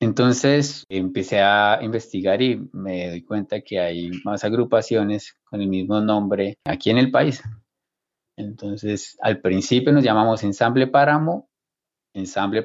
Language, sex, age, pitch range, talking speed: Spanish, male, 20-39, 100-125 Hz, 135 wpm